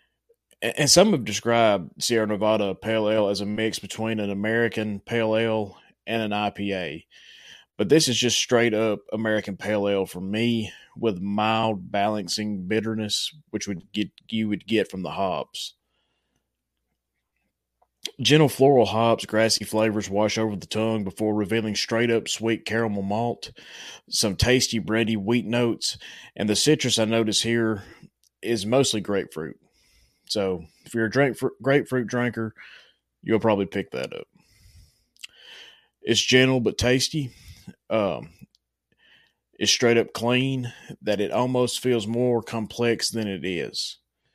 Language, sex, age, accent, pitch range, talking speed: English, male, 20-39, American, 105-115 Hz, 135 wpm